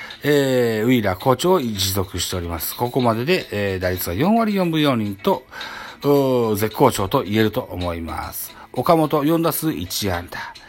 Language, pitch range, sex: Japanese, 100-155 Hz, male